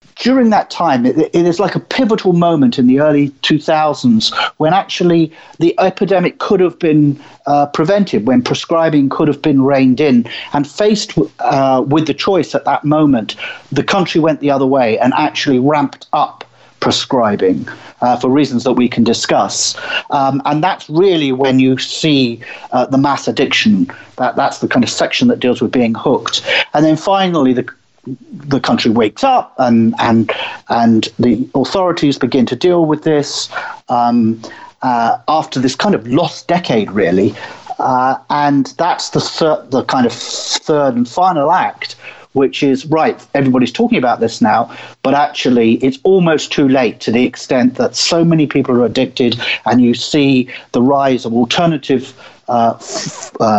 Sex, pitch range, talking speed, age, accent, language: male, 125-170 Hz, 170 wpm, 50-69, British, English